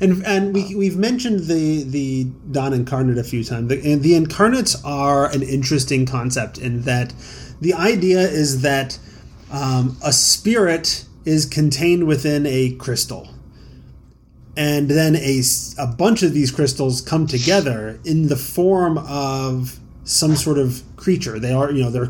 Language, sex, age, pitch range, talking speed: English, male, 30-49, 130-160 Hz, 155 wpm